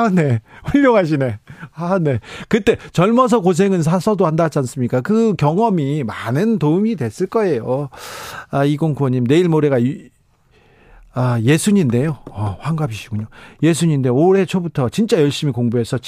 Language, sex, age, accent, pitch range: Korean, male, 40-59, native, 125-175 Hz